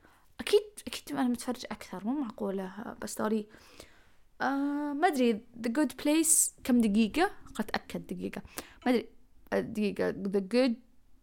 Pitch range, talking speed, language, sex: 200-245 Hz, 135 wpm, Arabic, female